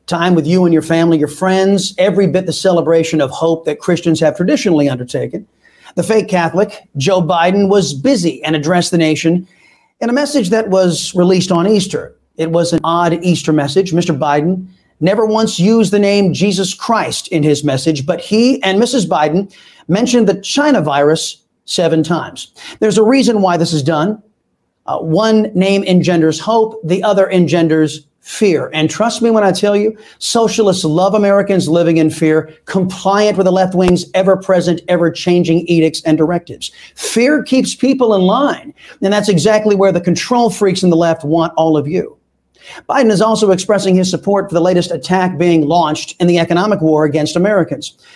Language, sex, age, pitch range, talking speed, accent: English, male, 40-59, 165-205 Hz, 180 wpm, American